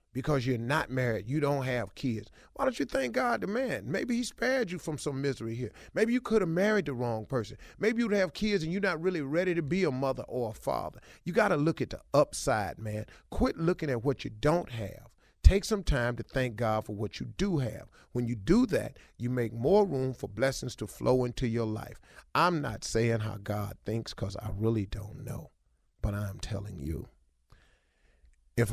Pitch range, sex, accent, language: 100-130 Hz, male, American, English